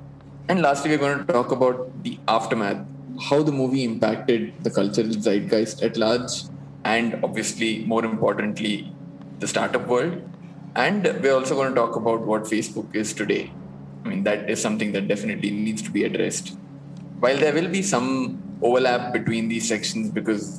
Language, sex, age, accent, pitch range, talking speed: English, male, 20-39, Indian, 110-180 Hz, 165 wpm